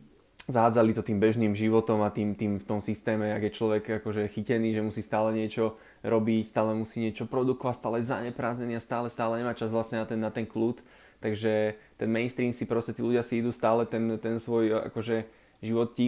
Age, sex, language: 20-39, male, Slovak